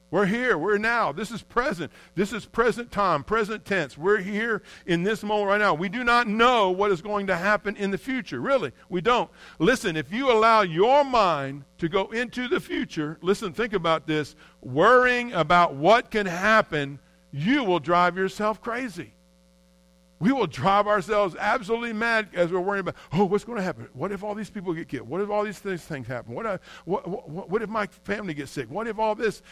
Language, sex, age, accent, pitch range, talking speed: English, male, 50-69, American, 165-220 Hz, 205 wpm